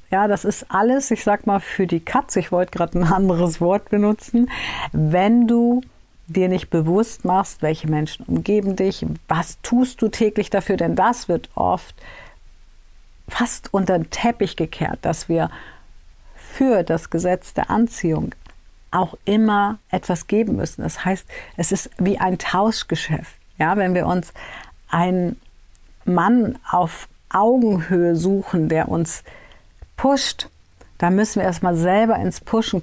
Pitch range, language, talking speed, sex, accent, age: 165-210 Hz, German, 145 wpm, female, German, 50-69